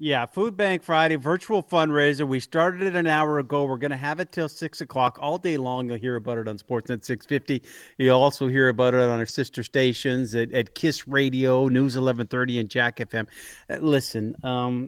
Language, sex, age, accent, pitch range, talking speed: English, male, 50-69, American, 115-140 Hz, 205 wpm